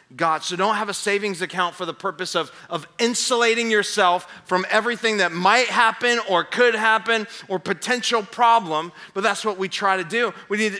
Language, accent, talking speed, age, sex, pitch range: English, American, 185 wpm, 30-49, male, 175-220 Hz